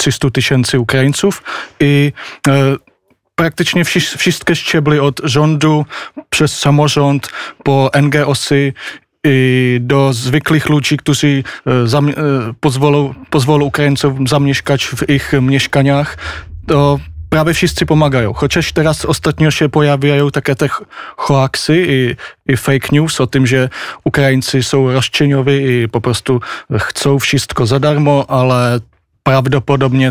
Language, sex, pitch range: Polish, male, 125-145 Hz